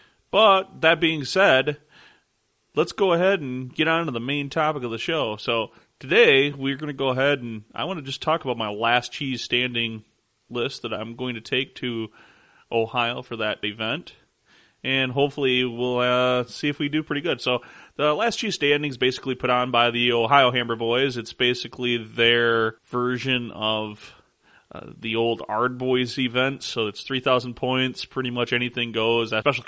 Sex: male